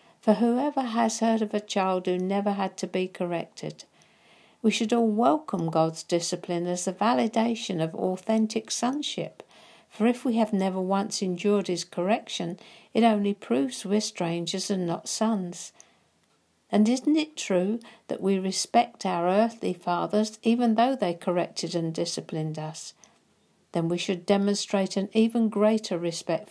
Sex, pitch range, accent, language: female, 175-220 Hz, British, English